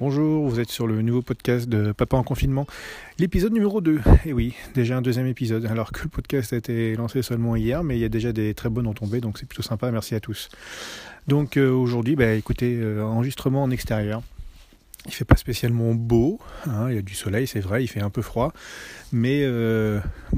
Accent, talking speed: French, 220 wpm